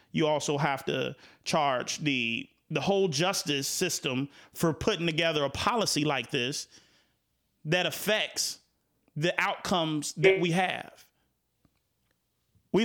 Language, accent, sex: English, American, male